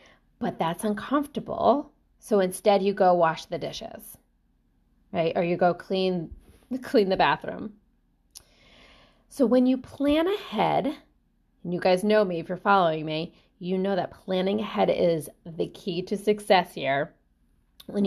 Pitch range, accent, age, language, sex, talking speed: 175-220 Hz, American, 30-49, English, female, 145 wpm